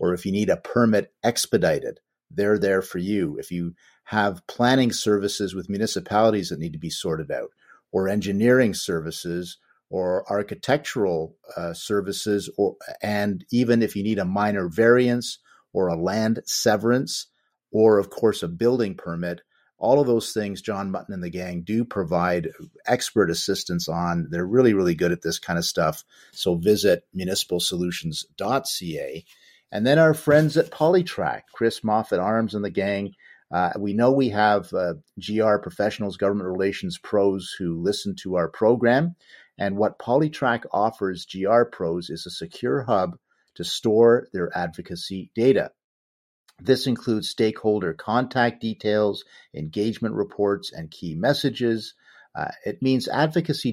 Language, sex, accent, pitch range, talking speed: English, male, American, 90-115 Hz, 150 wpm